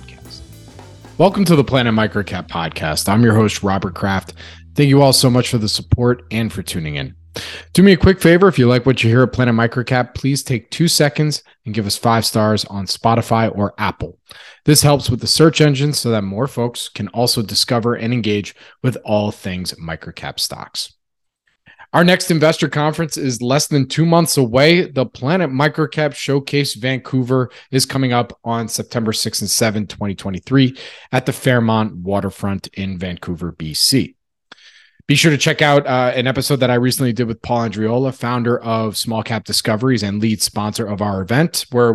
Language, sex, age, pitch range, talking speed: English, male, 30-49, 105-135 Hz, 185 wpm